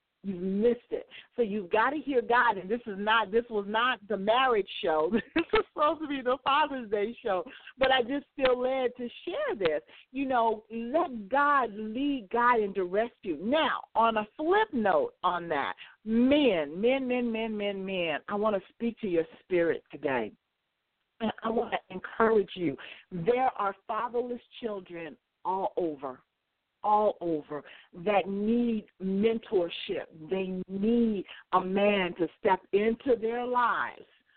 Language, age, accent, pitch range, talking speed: English, 50-69, American, 190-250 Hz, 160 wpm